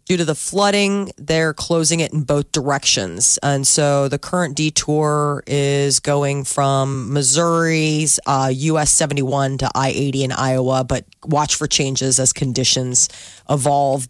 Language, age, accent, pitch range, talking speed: English, 30-49, American, 140-185 Hz, 140 wpm